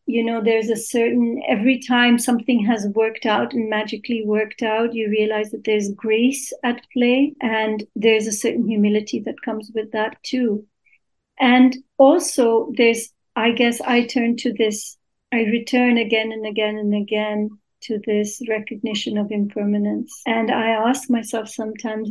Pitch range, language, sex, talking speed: 215-245 Hz, English, female, 155 wpm